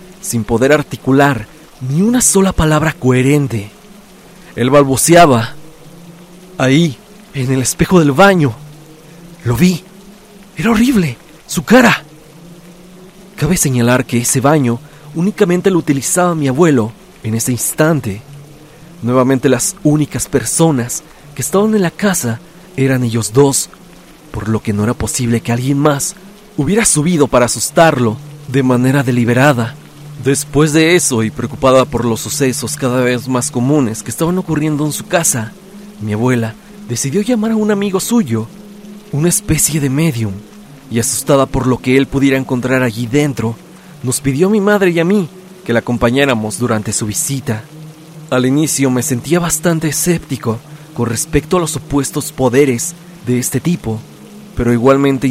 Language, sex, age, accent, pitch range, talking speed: Spanish, male, 40-59, Mexican, 125-175 Hz, 145 wpm